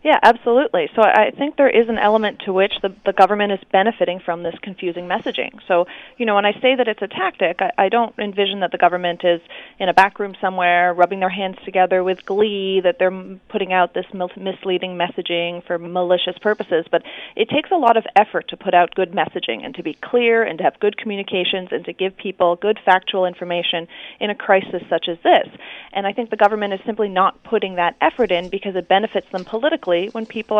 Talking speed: 220 wpm